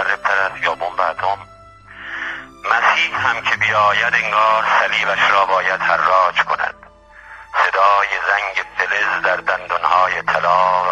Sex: male